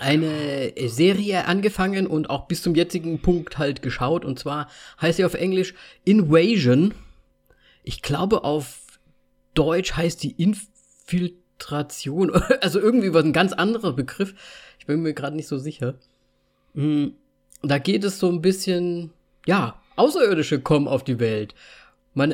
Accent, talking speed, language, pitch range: German, 140 wpm, German, 130-175 Hz